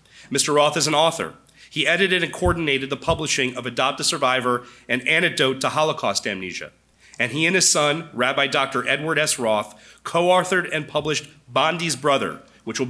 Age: 40-59